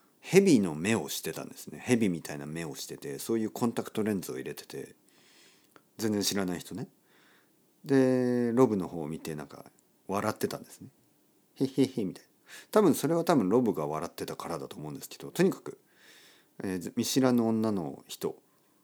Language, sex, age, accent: Japanese, male, 40-59, native